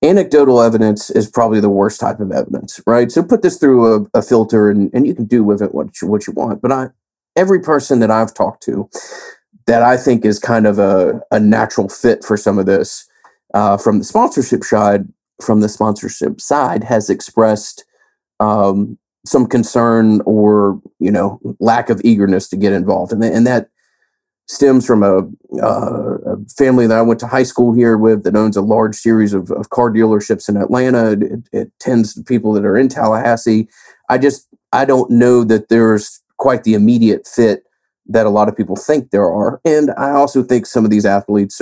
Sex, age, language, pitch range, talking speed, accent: male, 30-49, English, 105-125 Hz, 200 wpm, American